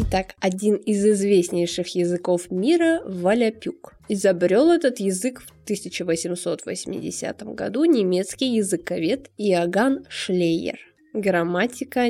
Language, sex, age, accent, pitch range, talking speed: Russian, female, 20-39, native, 180-245 Hz, 90 wpm